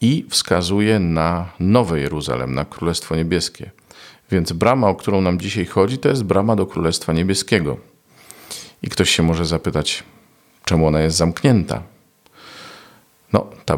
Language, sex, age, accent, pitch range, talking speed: Polish, male, 40-59, native, 85-105 Hz, 140 wpm